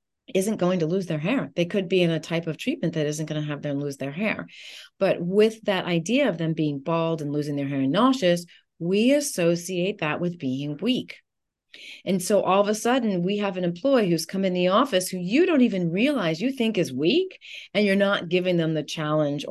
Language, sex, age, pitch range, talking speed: English, female, 30-49, 150-200 Hz, 230 wpm